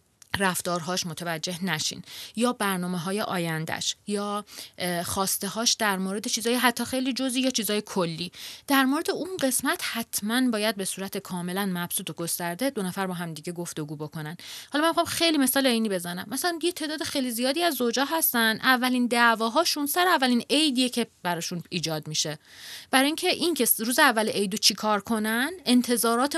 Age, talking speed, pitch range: 30-49, 160 wpm, 180-260 Hz